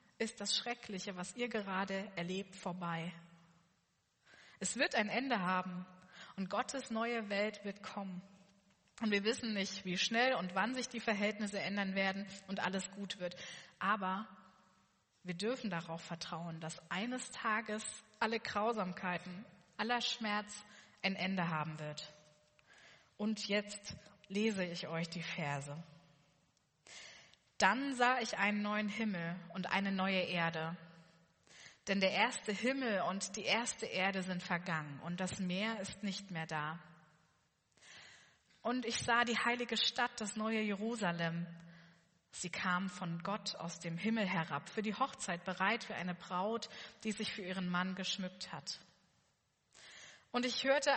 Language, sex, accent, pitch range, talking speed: German, female, German, 175-220 Hz, 140 wpm